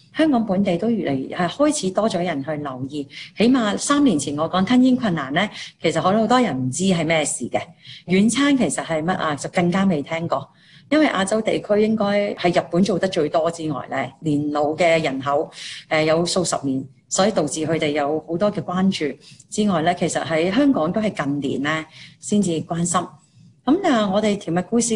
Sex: female